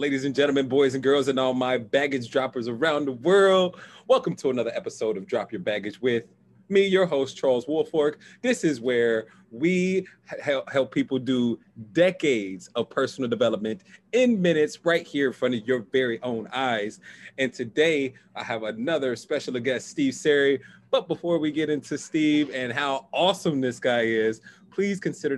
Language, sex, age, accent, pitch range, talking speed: English, male, 30-49, American, 130-175 Hz, 175 wpm